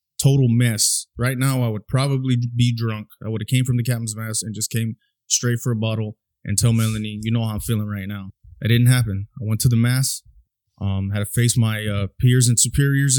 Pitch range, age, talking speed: 110-120 Hz, 20-39, 230 wpm